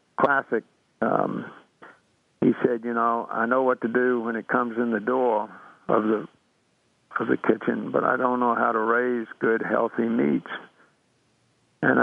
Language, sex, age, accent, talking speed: English, male, 60-79, American, 165 wpm